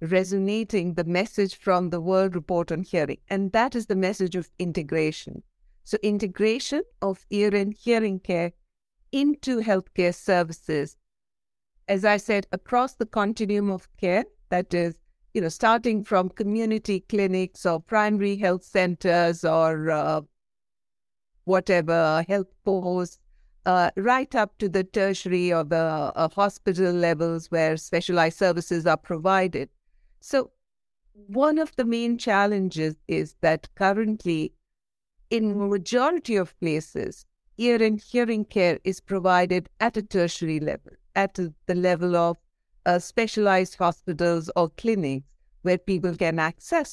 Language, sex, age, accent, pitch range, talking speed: English, female, 60-79, Indian, 175-215 Hz, 130 wpm